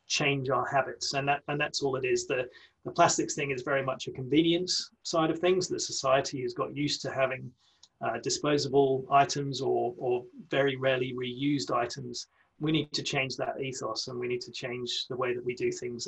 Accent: British